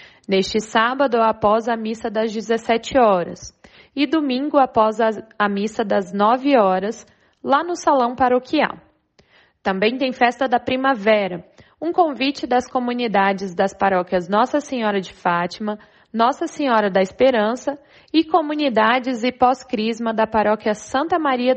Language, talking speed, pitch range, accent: Portuguese, 135 wpm, 210-270 Hz, Brazilian